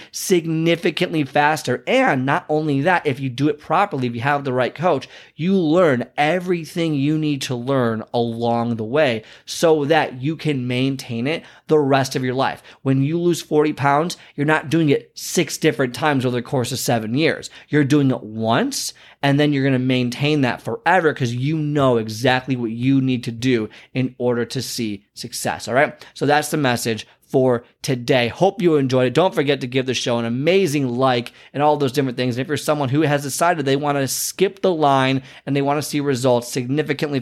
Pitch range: 125-155 Hz